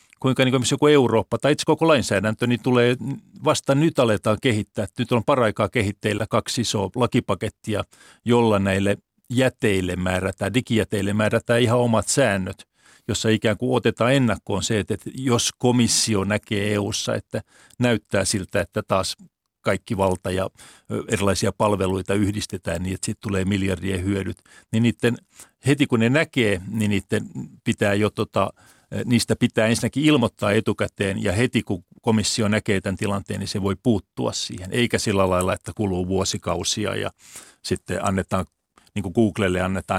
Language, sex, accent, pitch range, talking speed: Finnish, male, native, 100-120 Hz, 145 wpm